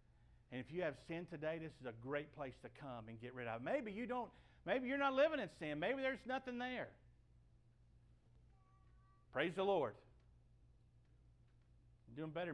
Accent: American